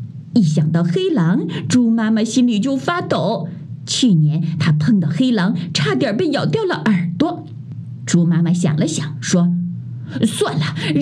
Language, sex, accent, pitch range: Chinese, female, native, 150-230 Hz